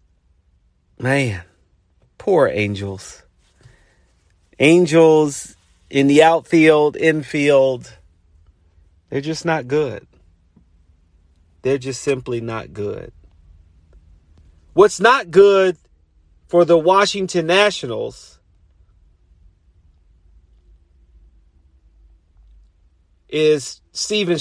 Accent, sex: American, male